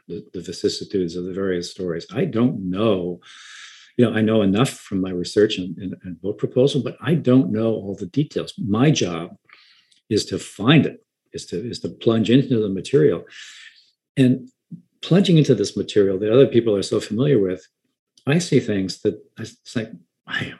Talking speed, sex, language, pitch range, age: 180 wpm, male, English, 100-130 Hz, 50-69